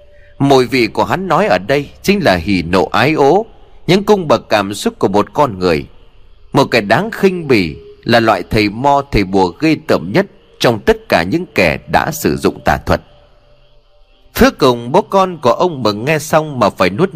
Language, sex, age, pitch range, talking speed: Vietnamese, male, 30-49, 100-160 Hz, 200 wpm